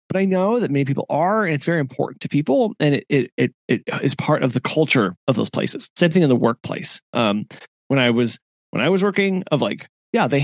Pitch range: 130-190 Hz